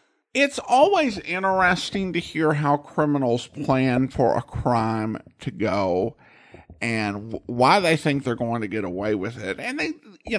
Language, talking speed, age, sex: English, 155 wpm, 50-69, male